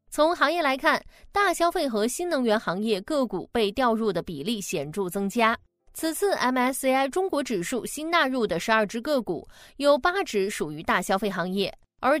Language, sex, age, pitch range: Chinese, female, 20-39, 205-305 Hz